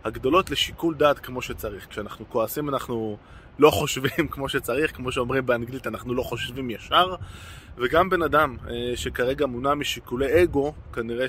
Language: Hebrew